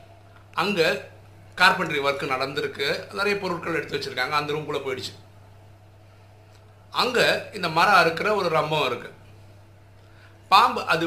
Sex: male